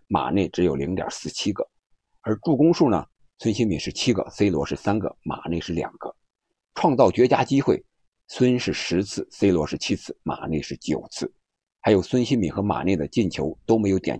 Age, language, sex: 50-69, Chinese, male